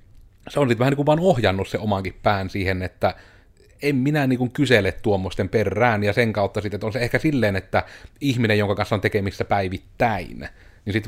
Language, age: Finnish, 30-49